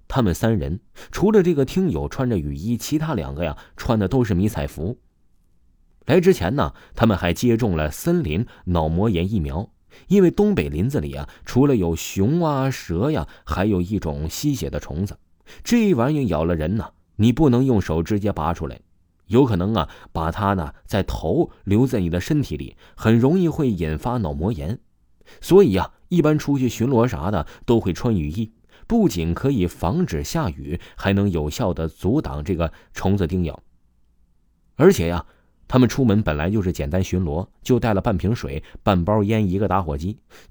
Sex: male